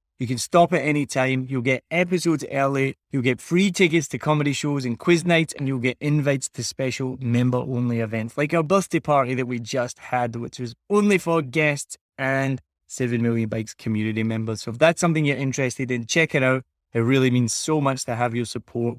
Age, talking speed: 20-39, 210 wpm